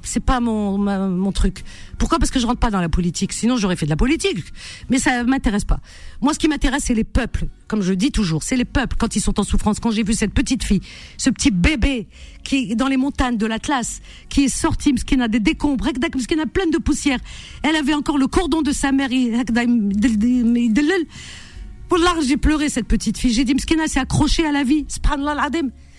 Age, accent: 50-69, French